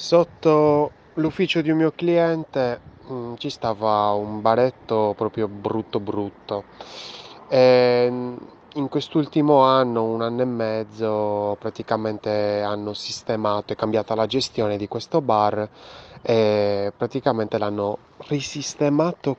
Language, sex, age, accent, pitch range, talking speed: Italian, male, 20-39, native, 105-125 Hz, 110 wpm